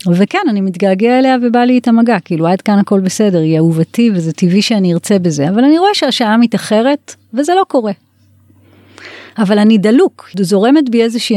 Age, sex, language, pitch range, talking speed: 30-49, female, Hebrew, 175-230 Hz, 180 wpm